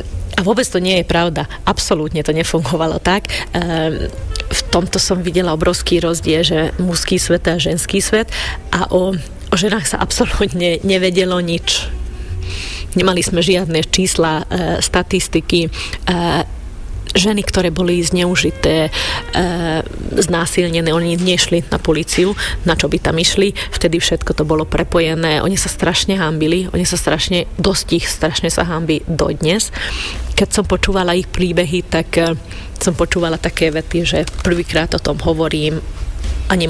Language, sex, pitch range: Slovak, female, 155-185 Hz